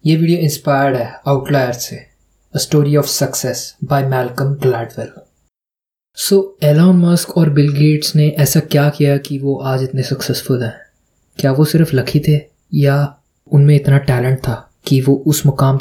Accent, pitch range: native, 135-155 Hz